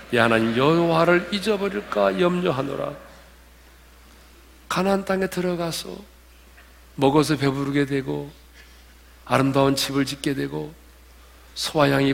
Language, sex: Korean, male